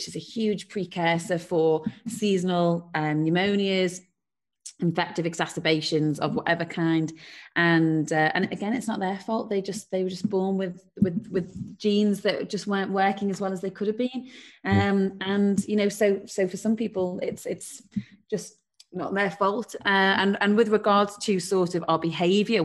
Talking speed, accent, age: 175 wpm, British, 30-49